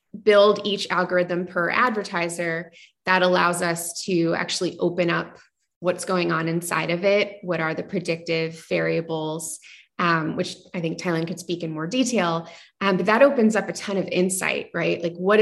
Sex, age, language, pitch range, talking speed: female, 20-39, English, 170-195 Hz, 175 wpm